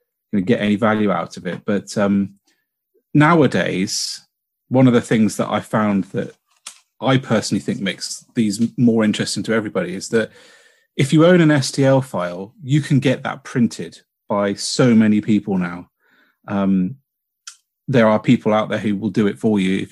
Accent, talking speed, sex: British, 175 wpm, male